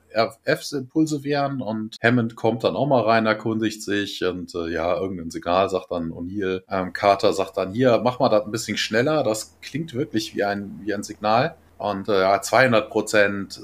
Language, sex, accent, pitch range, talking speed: German, male, German, 100-125 Hz, 190 wpm